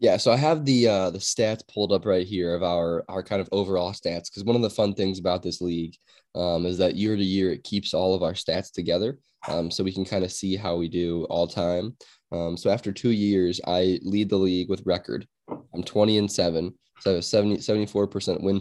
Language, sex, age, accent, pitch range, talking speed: English, male, 10-29, American, 85-105 Hz, 240 wpm